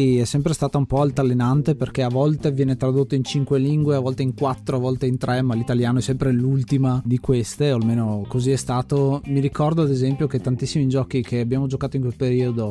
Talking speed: 220 wpm